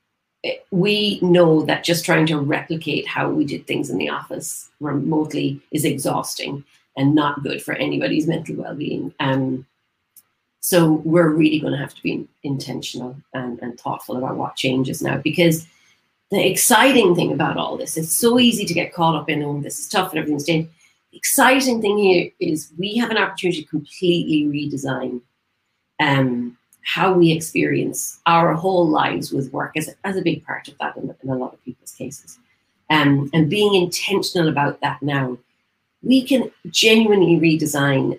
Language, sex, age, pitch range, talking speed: English, female, 40-59, 140-175 Hz, 170 wpm